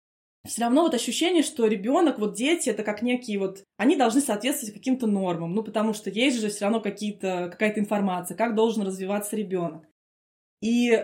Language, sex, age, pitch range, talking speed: Russian, female, 20-39, 210-255 Hz, 175 wpm